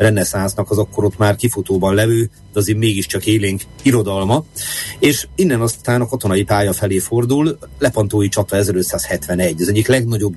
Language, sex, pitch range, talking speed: Hungarian, male, 100-115 Hz, 145 wpm